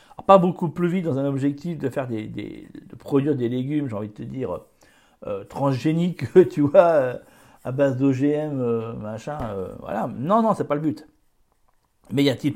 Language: French